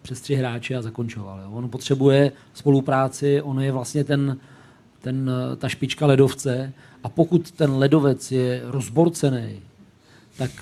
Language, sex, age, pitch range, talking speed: Czech, male, 40-59, 130-150 Hz, 135 wpm